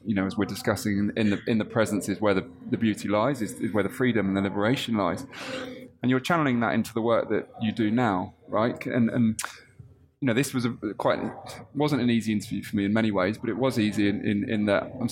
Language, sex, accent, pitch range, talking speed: English, male, British, 110-130 Hz, 250 wpm